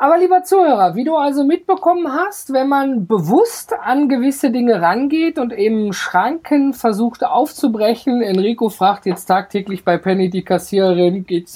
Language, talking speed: German, 150 wpm